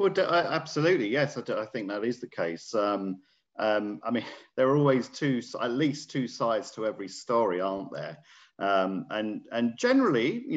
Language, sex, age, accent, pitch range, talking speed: English, male, 40-59, British, 90-125 Hz, 200 wpm